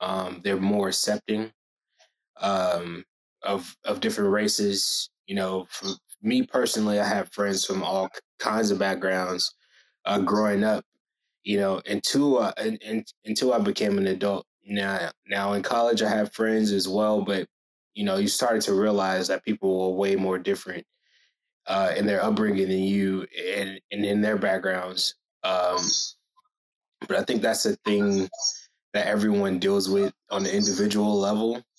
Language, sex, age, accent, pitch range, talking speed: English, male, 20-39, American, 100-110 Hz, 160 wpm